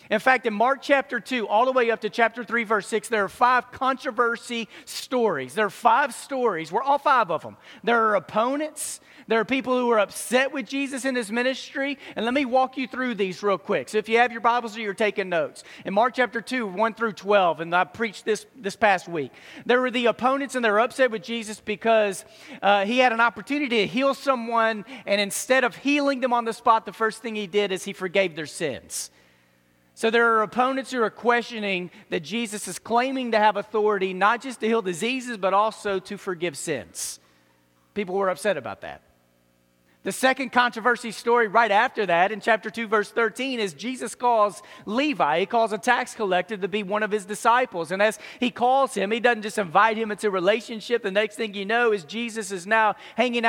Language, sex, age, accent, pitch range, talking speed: English, male, 40-59, American, 200-245 Hz, 215 wpm